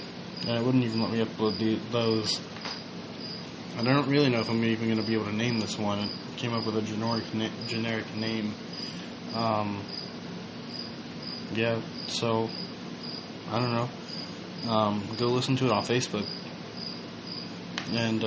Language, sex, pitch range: English, male, 105-115 Hz